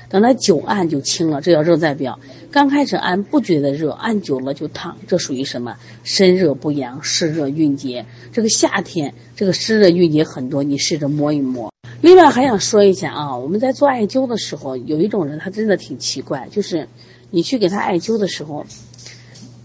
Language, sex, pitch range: Chinese, female, 135-200 Hz